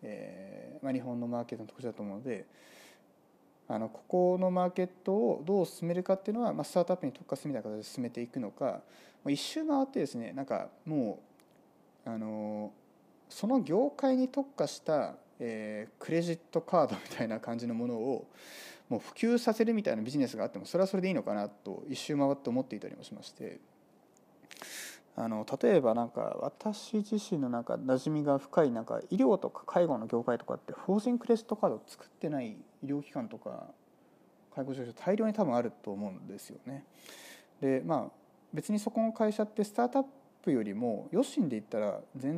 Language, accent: Japanese, native